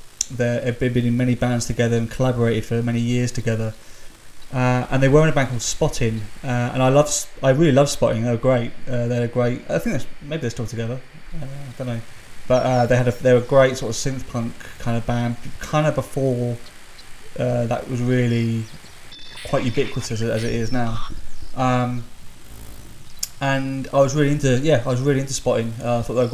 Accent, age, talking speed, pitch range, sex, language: British, 20-39, 200 wpm, 115-130 Hz, male, English